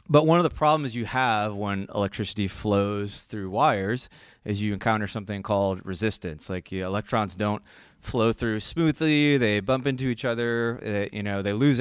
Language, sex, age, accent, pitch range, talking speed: English, male, 30-49, American, 100-120 Hz, 180 wpm